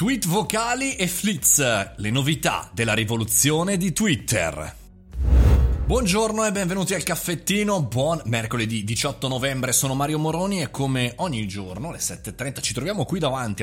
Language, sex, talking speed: Italian, male, 140 wpm